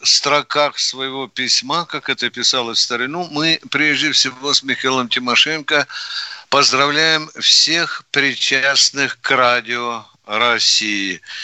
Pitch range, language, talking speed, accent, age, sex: 140-180 Hz, Russian, 105 wpm, native, 50-69, male